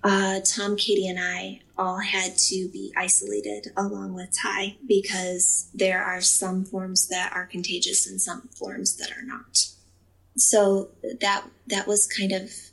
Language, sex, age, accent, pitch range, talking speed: English, female, 20-39, American, 180-195 Hz, 155 wpm